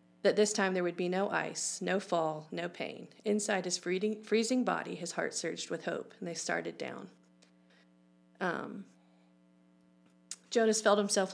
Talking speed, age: 155 wpm, 40-59